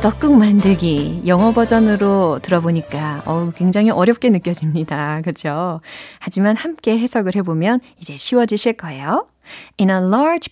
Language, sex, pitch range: Korean, female, 175-250 Hz